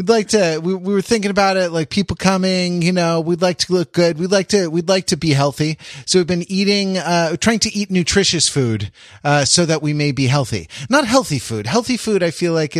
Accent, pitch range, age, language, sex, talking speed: American, 125-180 Hz, 30-49, English, male, 245 wpm